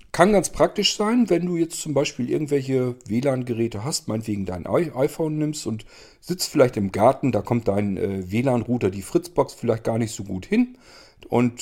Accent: German